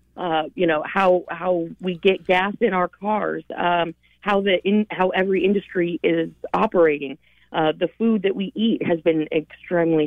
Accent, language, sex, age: American, English, female, 40-59